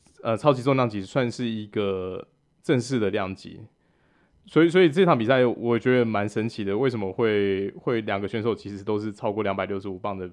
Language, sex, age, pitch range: Chinese, male, 20-39, 100-125 Hz